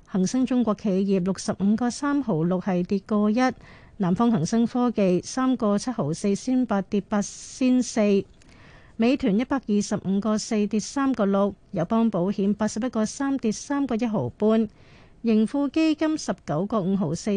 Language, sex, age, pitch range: Chinese, female, 50-69, 195-240 Hz